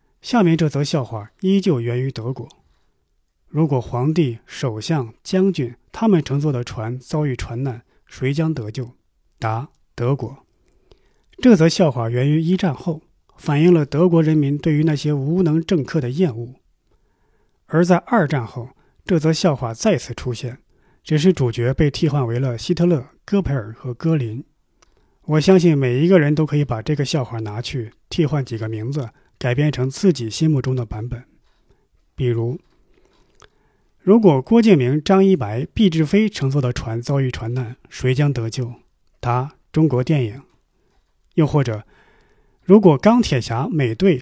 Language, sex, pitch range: Chinese, male, 120-165 Hz